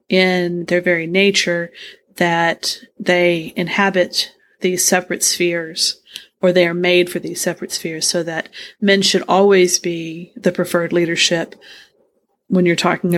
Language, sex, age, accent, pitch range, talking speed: English, female, 30-49, American, 170-190 Hz, 135 wpm